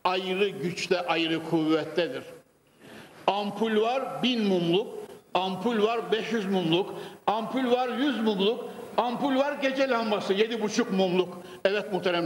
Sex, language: male, Turkish